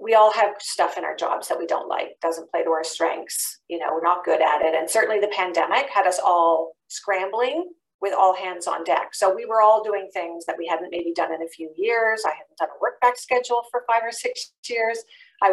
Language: English